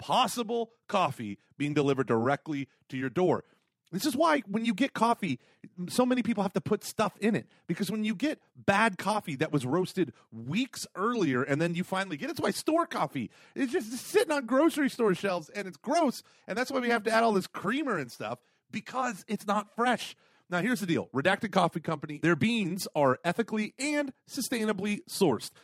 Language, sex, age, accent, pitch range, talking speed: English, male, 30-49, American, 150-230 Hz, 200 wpm